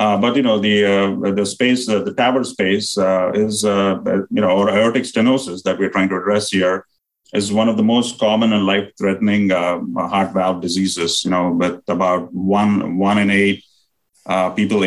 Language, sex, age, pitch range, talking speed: English, male, 30-49, 90-100 Hz, 195 wpm